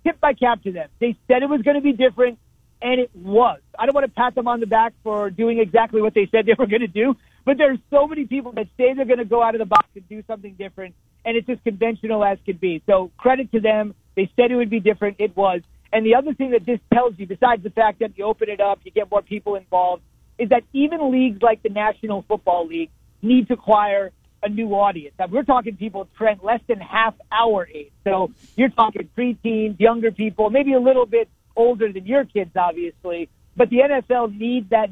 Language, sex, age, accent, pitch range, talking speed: English, male, 40-59, American, 200-240 Hz, 240 wpm